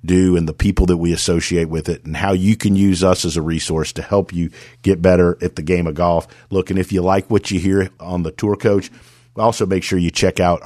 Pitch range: 85-95 Hz